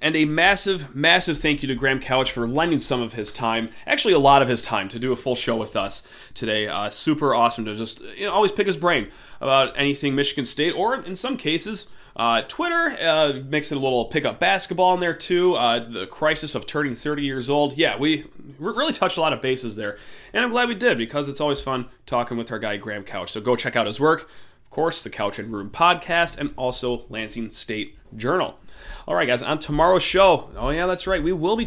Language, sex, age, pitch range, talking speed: English, male, 30-49, 120-165 Hz, 235 wpm